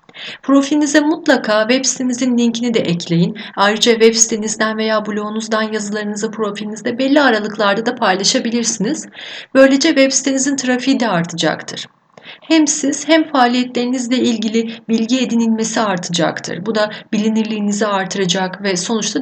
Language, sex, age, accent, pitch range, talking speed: Turkish, female, 30-49, native, 195-245 Hz, 120 wpm